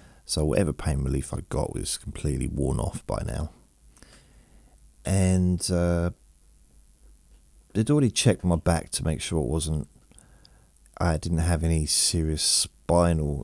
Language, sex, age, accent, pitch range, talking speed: English, male, 40-59, British, 75-90 Hz, 130 wpm